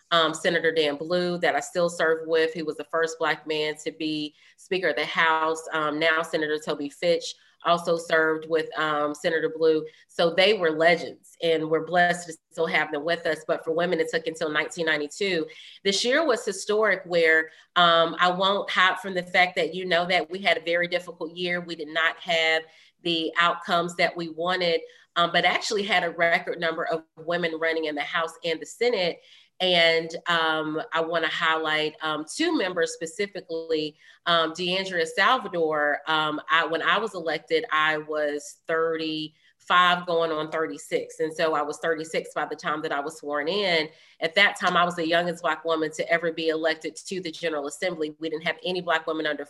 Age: 30-49